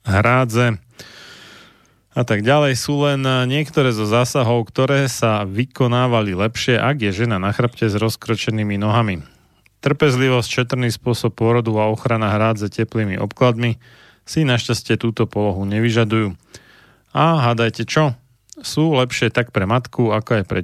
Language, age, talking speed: Slovak, 30-49, 135 wpm